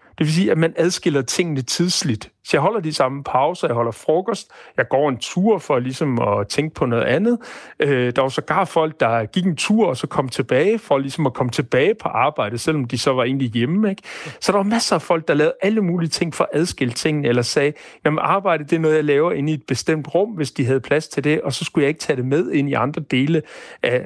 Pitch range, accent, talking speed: 135-185 Hz, native, 260 wpm